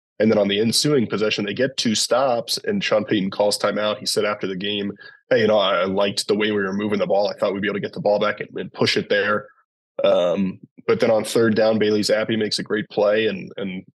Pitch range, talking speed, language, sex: 105-115 Hz, 260 wpm, English, male